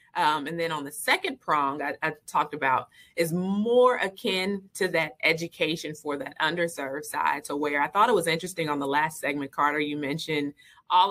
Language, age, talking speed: English, 20-39, 195 wpm